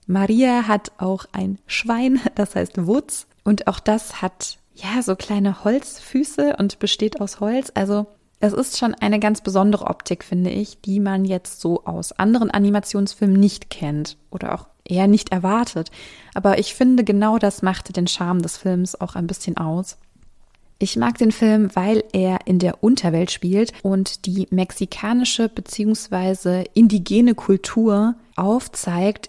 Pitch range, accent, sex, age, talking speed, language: 185-215 Hz, German, female, 20-39, 155 wpm, German